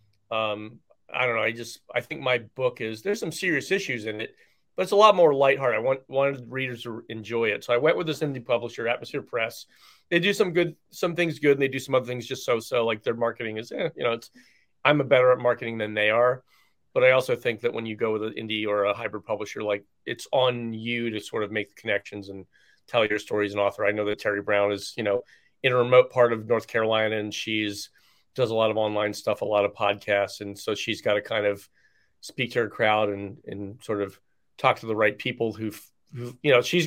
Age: 30-49